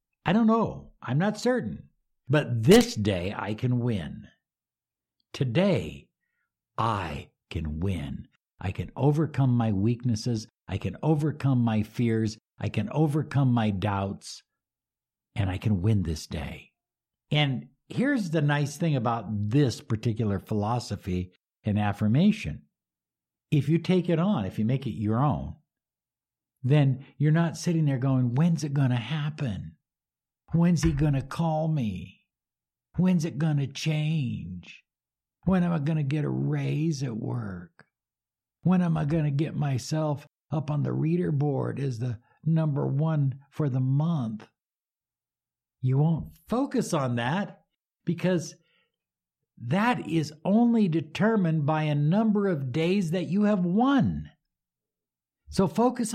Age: 60-79